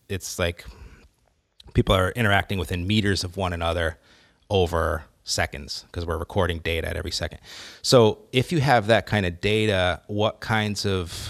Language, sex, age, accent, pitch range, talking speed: English, male, 30-49, American, 90-105 Hz, 160 wpm